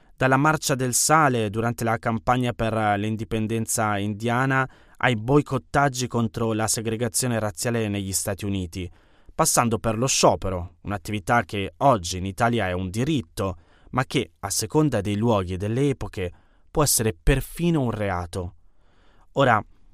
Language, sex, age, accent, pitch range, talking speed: Italian, male, 20-39, native, 95-120 Hz, 140 wpm